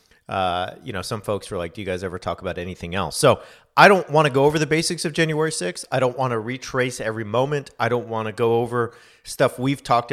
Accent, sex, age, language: American, male, 40-59, English